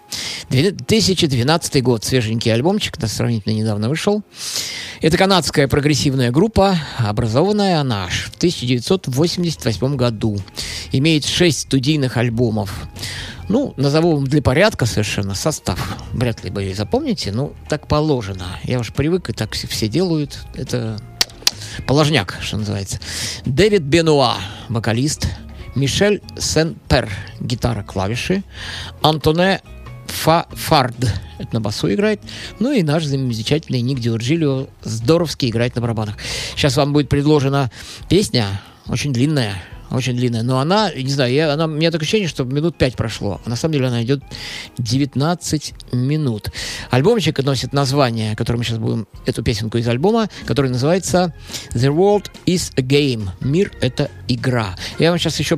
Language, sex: Russian, male